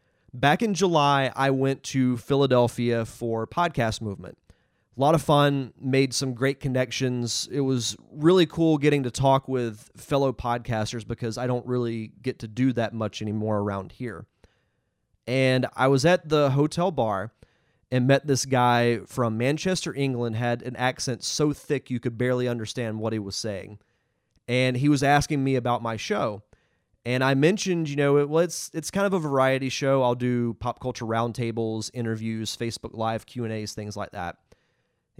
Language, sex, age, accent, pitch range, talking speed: English, male, 30-49, American, 115-140 Hz, 175 wpm